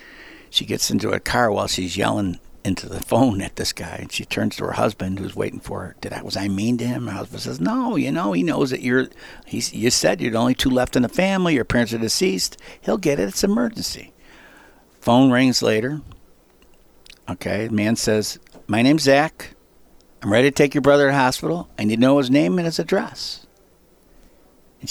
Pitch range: 105-150 Hz